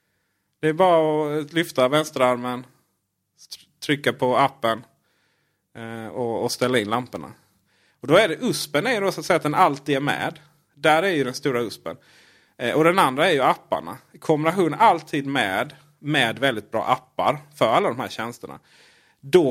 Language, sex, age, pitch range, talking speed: Swedish, male, 30-49, 110-145 Hz, 160 wpm